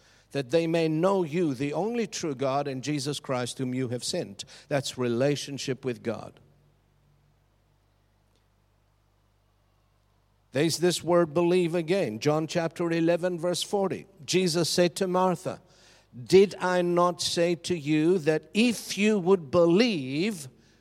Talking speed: 130 wpm